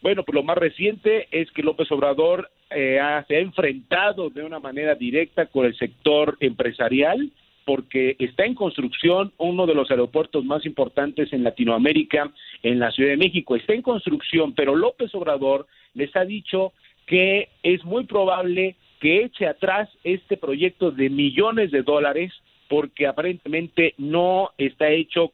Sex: male